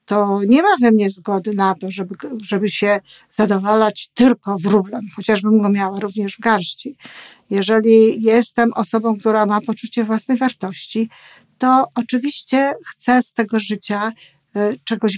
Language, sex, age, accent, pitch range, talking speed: Polish, female, 50-69, native, 205-240 Hz, 140 wpm